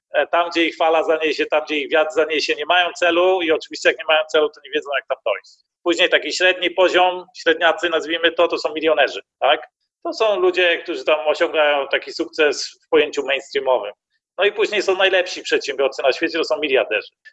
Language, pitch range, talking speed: Polish, 160-245 Hz, 200 wpm